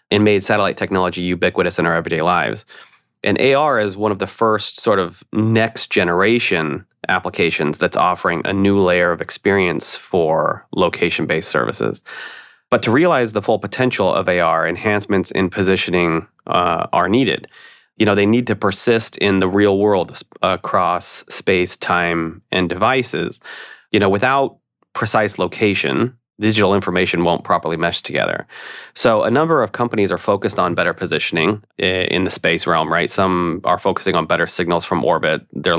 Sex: male